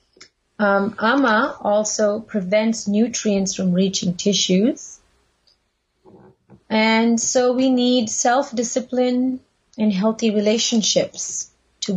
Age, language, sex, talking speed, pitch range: 30-49, English, female, 85 wpm, 190-230 Hz